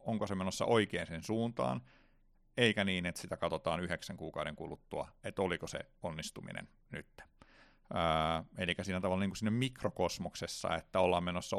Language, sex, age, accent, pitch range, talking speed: Finnish, male, 30-49, native, 85-100 Hz, 155 wpm